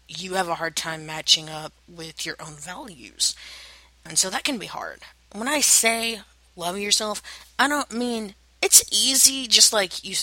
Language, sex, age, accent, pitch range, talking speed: English, female, 30-49, American, 160-205 Hz, 175 wpm